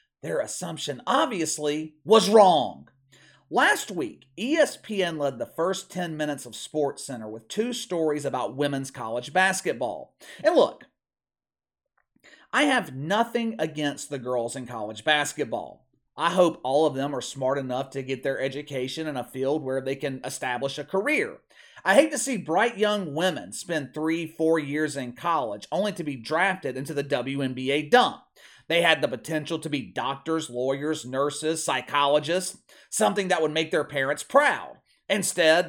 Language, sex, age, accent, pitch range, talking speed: English, male, 40-59, American, 140-195 Hz, 160 wpm